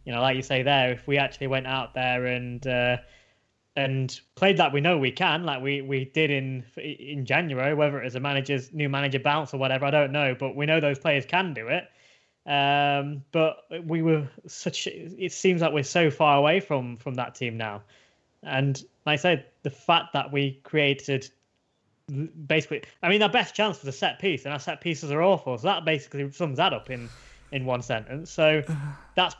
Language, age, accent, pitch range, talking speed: English, 10-29, British, 135-165 Hz, 210 wpm